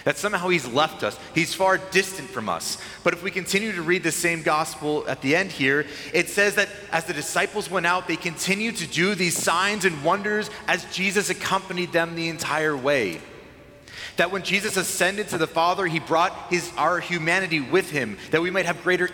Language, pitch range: English, 145-180 Hz